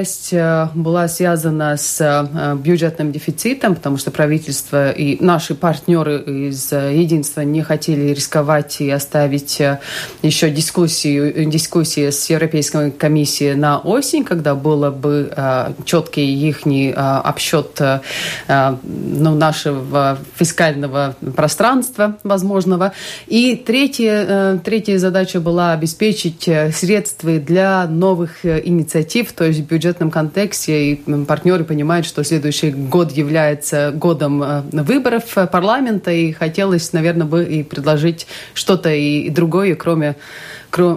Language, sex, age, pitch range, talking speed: Russian, female, 30-49, 145-175 Hz, 105 wpm